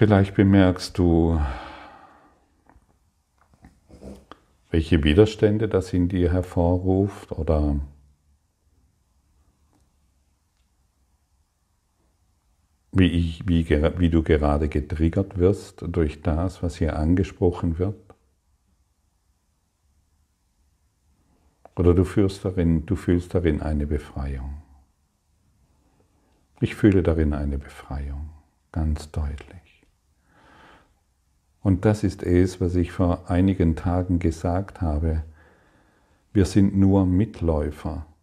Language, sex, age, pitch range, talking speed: German, male, 50-69, 75-90 Hz, 80 wpm